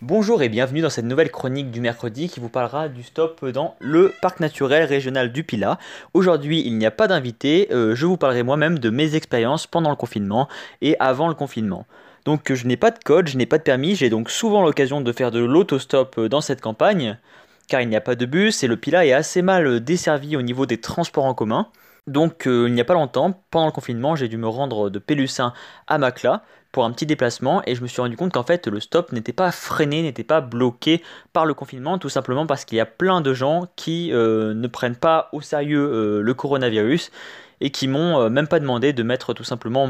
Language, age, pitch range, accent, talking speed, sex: French, 20-39, 120-160 Hz, French, 235 wpm, male